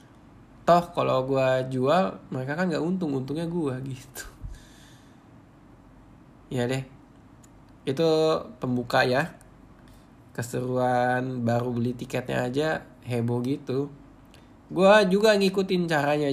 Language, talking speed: Indonesian, 100 wpm